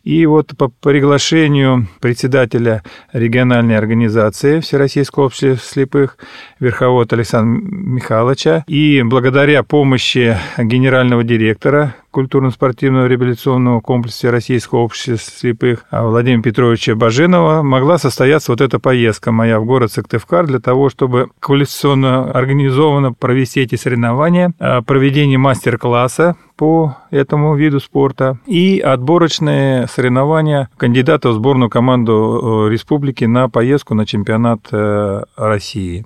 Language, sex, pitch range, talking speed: Russian, male, 115-145 Hz, 105 wpm